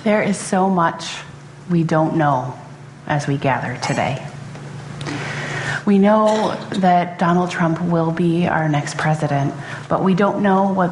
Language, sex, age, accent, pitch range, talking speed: English, female, 30-49, American, 145-175 Hz, 145 wpm